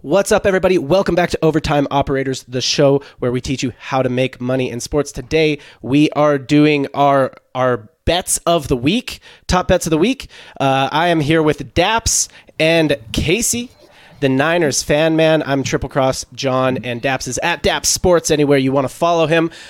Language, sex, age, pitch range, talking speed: English, male, 30-49, 130-165 Hz, 190 wpm